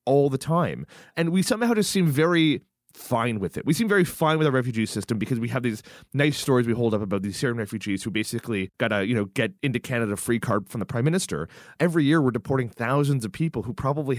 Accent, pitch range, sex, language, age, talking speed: American, 110-145 Hz, male, English, 20-39, 240 wpm